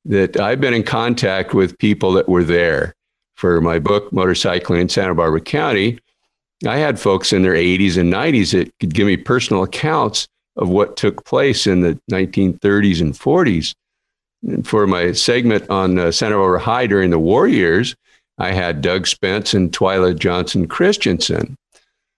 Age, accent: 50-69, American